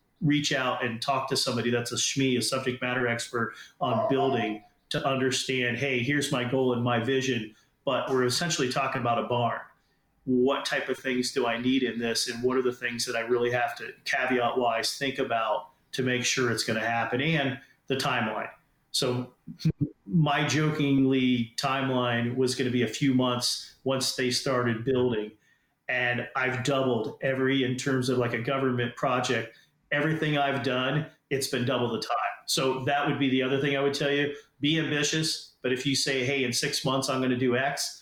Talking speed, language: 195 wpm, English